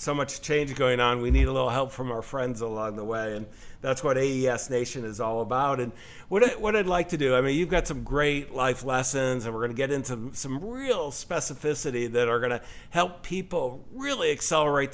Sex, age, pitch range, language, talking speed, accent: male, 50-69, 125-160 Hz, English, 230 wpm, American